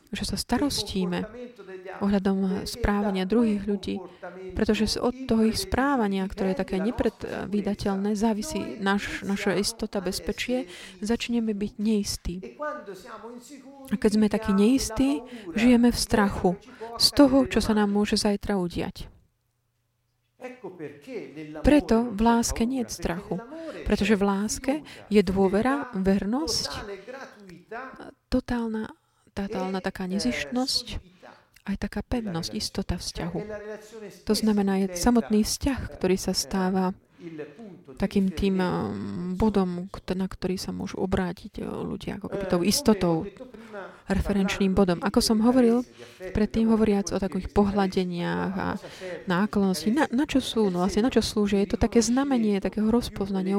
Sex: female